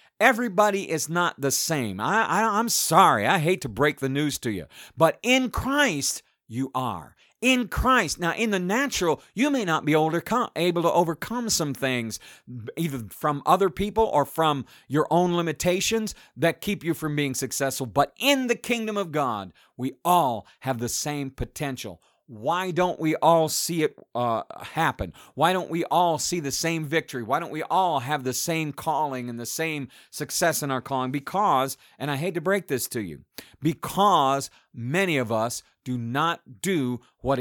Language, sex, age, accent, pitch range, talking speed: English, male, 50-69, American, 135-185 Hz, 185 wpm